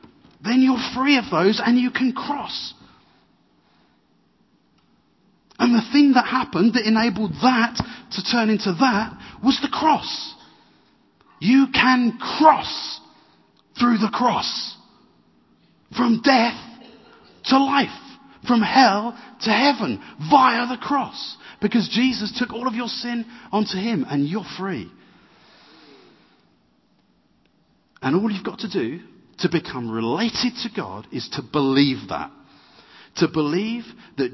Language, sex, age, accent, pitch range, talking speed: English, male, 30-49, British, 205-260 Hz, 125 wpm